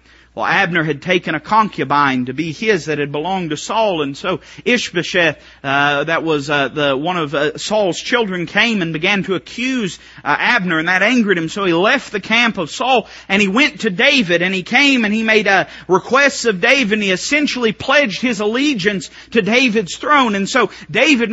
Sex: male